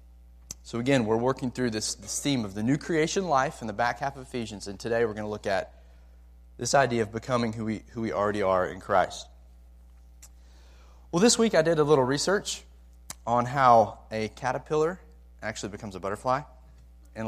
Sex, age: male, 30-49